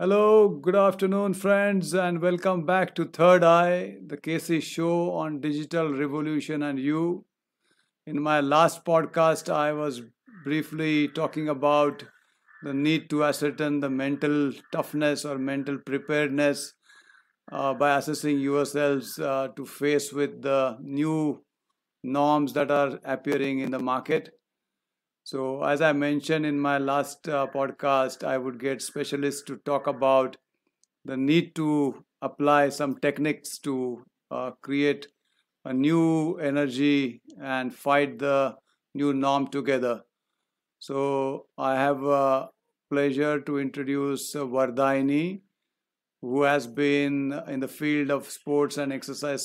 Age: 60-79